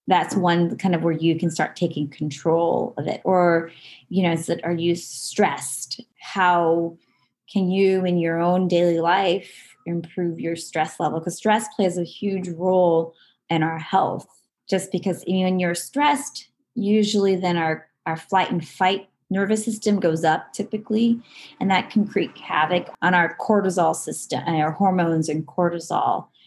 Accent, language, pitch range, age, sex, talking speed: American, English, 165-195 Hz, 20-39, female, 165 wpm